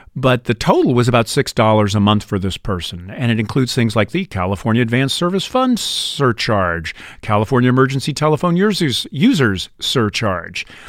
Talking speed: 155 wpm